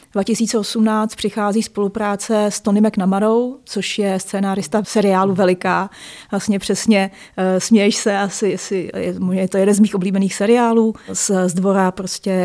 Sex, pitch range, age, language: female, 195-220 Hz, 30-49, Czech